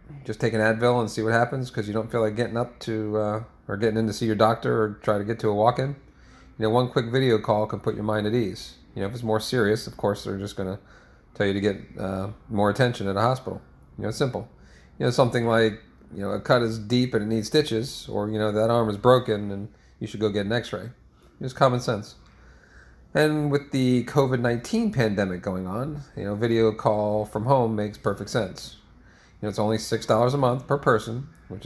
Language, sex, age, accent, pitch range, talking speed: English, male, 40-59, American, 105-125 Hz, 245 wpm